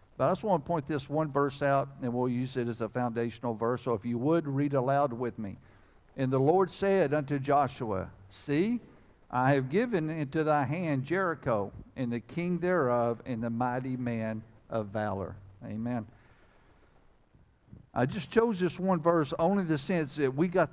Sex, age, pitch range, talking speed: male, 60-79, 120-155 Hz, 185 wpm